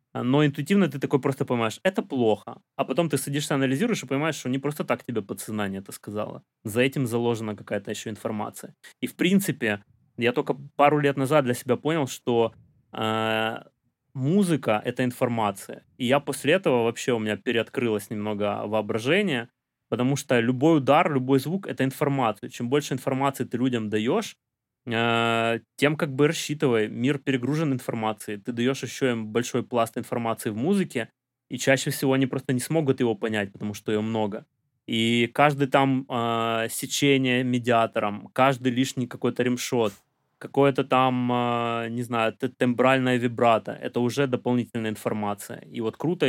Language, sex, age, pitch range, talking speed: Ukrainian, male, 20-39, 115-140 Hz, 160 wpm